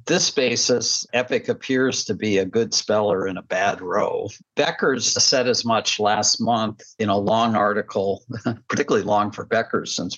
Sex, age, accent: male, 50-69, American